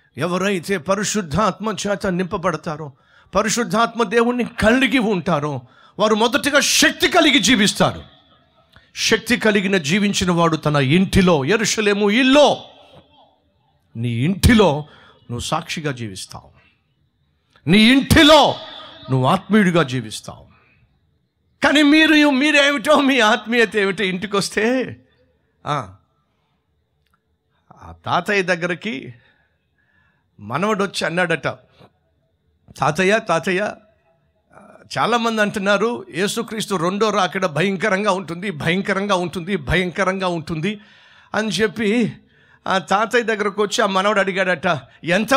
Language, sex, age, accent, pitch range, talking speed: Telugu, male, 50-69, native, 170-225 Hz, 90 wpm